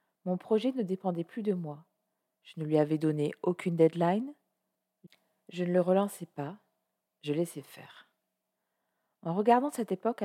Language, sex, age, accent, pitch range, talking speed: French, female, 40-59, French, 165-215 Hz, 150 wpm